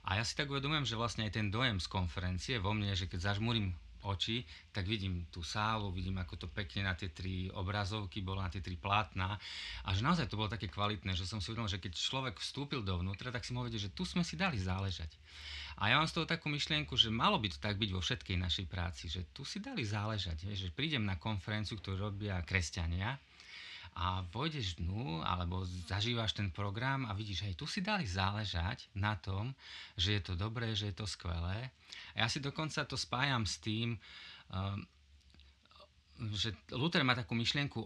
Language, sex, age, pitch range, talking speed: Slovak, male, 30-49, 95-125 Hz, 205 wpm